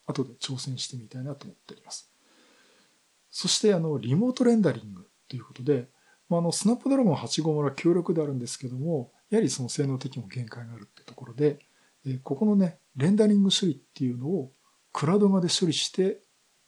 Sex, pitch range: male, 125-170 Hz